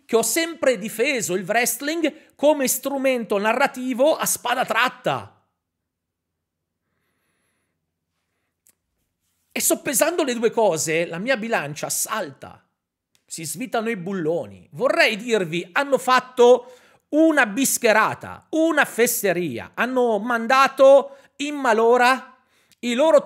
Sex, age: male, 40-59